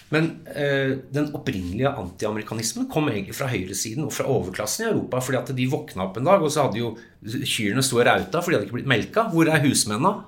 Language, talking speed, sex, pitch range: English, 220 wpm, male, 115-150 Hz